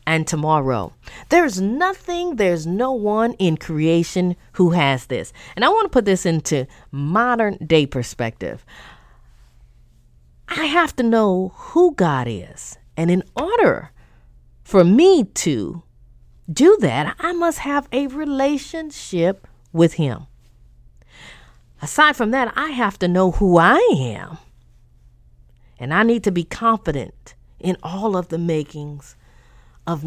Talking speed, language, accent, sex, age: 135 wpm, English, American, female, 40-59